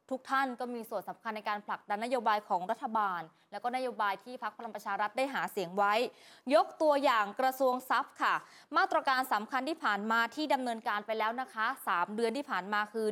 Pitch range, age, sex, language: 215-270 Hz, 20-39, female, Thai